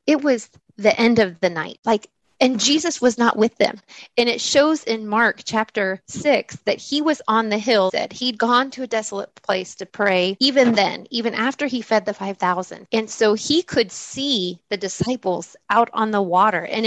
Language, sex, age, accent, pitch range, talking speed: English, female, 30-49, American, 200-260 Hz, 200 wpm